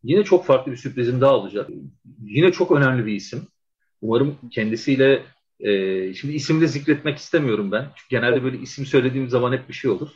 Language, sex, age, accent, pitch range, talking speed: Turkish, male, 40-59, native, 115-165 Hz, 175 wpm